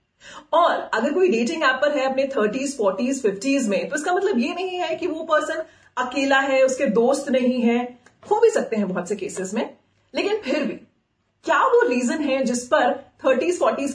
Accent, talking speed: native, 200 wpm